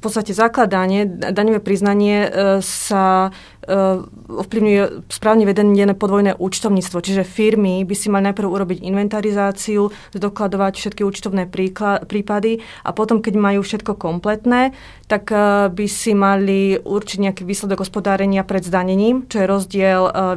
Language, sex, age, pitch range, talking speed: Slovak, female, 30-49, 190-210 Hz, 135 wpm